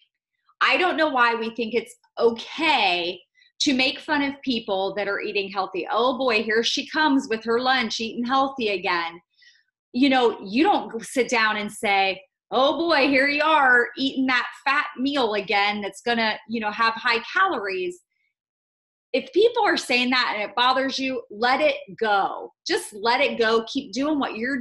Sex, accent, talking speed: female, American, 180 wpm